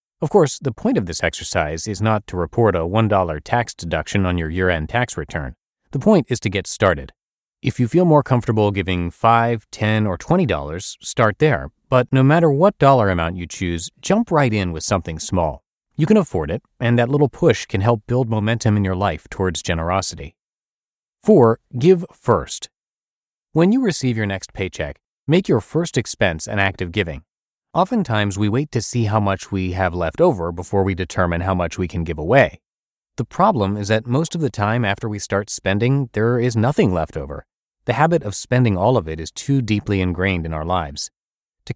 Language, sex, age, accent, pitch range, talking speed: English, male, 30-49, American, 90-125 Hz, 200 wpm